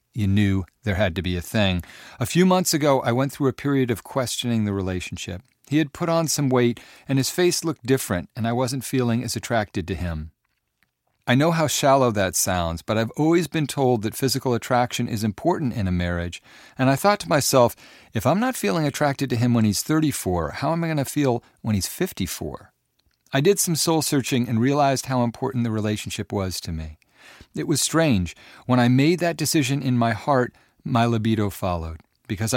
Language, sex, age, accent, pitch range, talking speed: English, male, 50-69, American, 100-135 Hz, 205 wpm